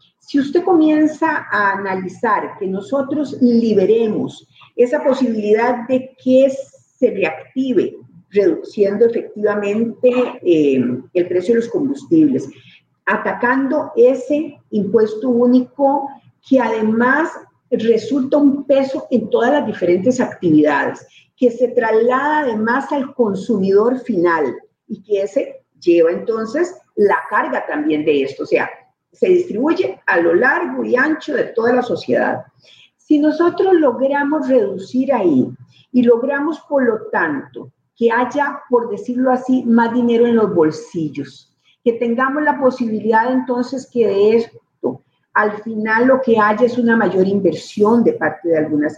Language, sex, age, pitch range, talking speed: Spanish, female, 40-59, 210-275 Hz, 130 wpm